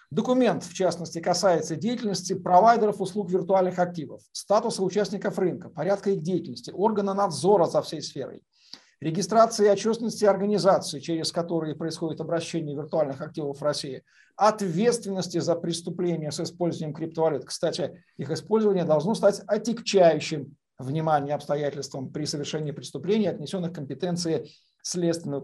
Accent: native